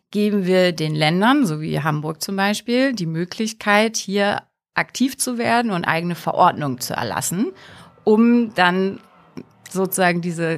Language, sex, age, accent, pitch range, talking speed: German, female, 30-49, German, 170-225 Hz, 135 wpm